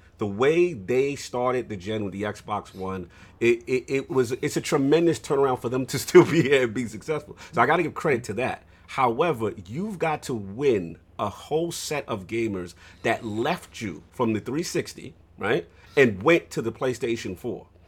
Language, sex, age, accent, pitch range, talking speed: English, male, 40-59, American, 110-150 Hz, 195 wpm